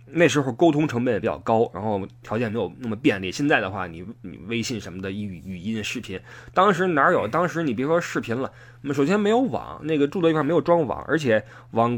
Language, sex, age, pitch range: Chinese, male, 20-39, 100-140 Hz